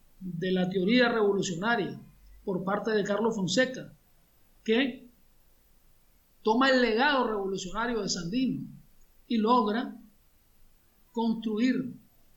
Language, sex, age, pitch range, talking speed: Spanish, male, 50-69, 200-250 Hz, 90 wpm